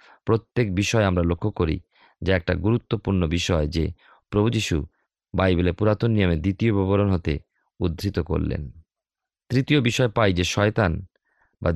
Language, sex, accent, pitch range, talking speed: Bengali, male, native, 90-110 Hz, 130 wpm